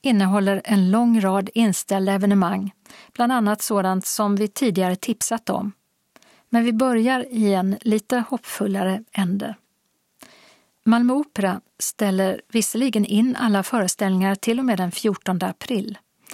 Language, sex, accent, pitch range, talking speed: Swedish, female, native, 190-230 Hz, 130 wpm